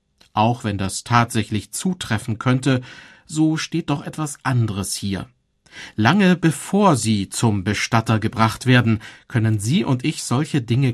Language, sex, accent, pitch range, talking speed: German, male, German, 105-140 Hz, 135 wpm